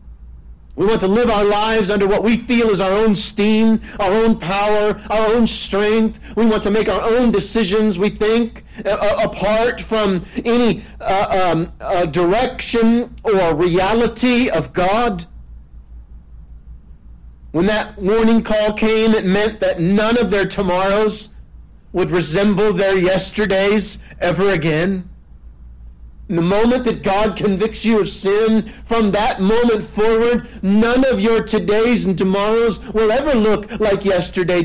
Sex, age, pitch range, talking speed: male, 40-59, 175-220 Hz, 140 wpm